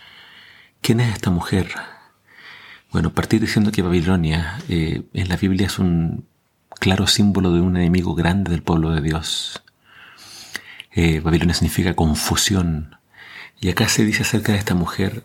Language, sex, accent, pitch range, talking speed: Spanish, male, Argentinian, 85-100 Hz, 145 wpm